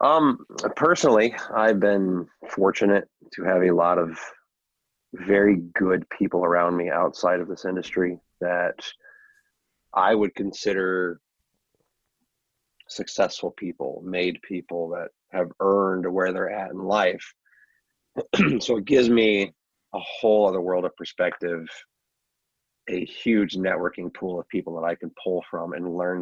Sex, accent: male, American